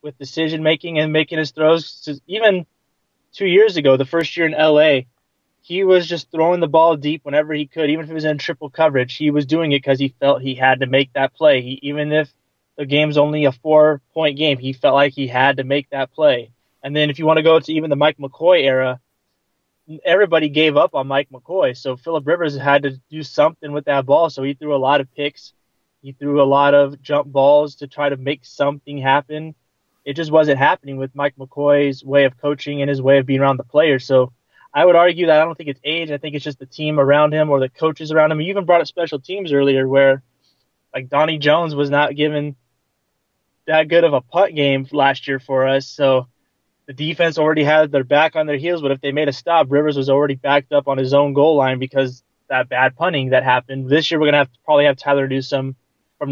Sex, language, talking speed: male, English, 230 wpm